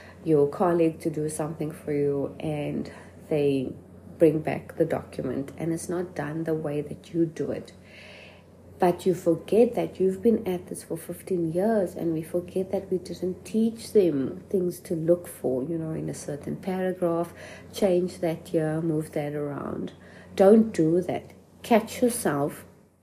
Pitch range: 160-200 Hz